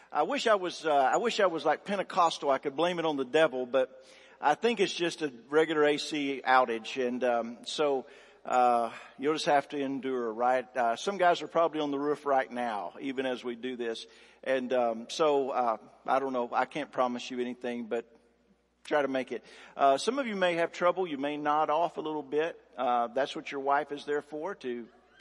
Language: English